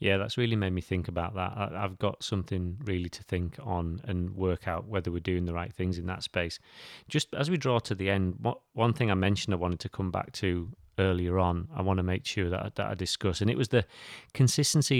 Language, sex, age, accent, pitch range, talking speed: English, male, 30-49, British, 90-110 Hz, 245 wpm